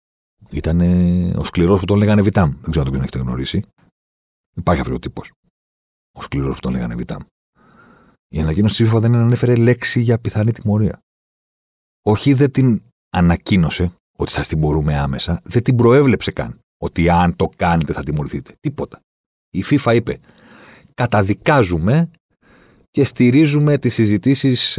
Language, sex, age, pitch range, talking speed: Greek, male, 40-59, 70-105 Hz, 150 wpm